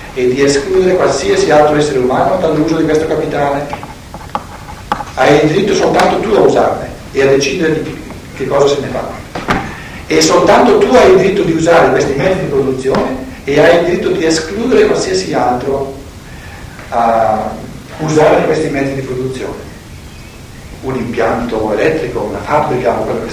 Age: 60-79